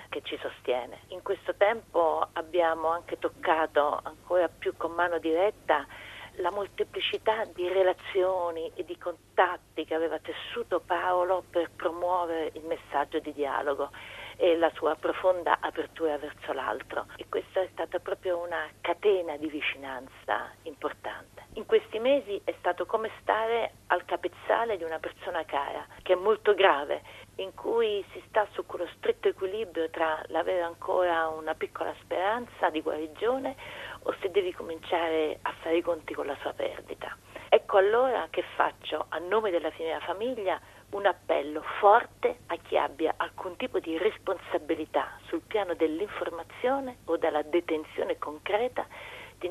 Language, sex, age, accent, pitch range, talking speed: Italian, female, 40-59, native, 160-225 Hz, 145 wpm